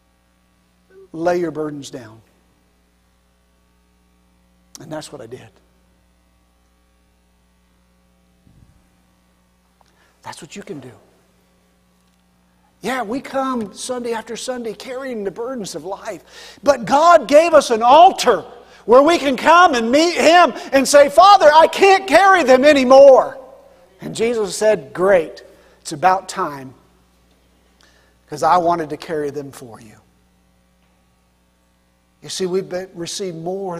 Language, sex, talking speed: English, male, 115 wpm